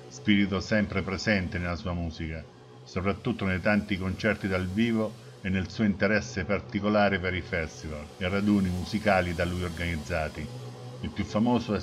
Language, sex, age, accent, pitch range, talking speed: Italian, male, 60-79, native, 80-105 Hz, 145 wpm